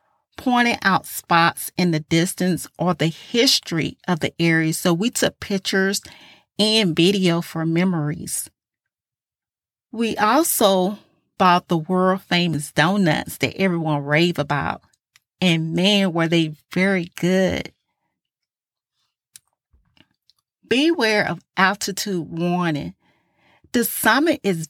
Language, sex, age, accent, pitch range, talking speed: English, female, 40-59, American, 165-200 Hz, 105 wpm